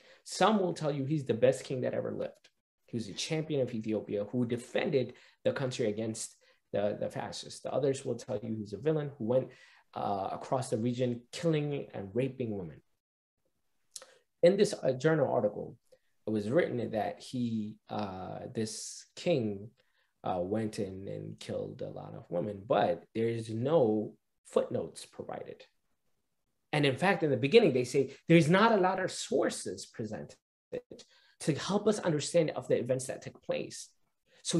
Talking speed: 170 wpm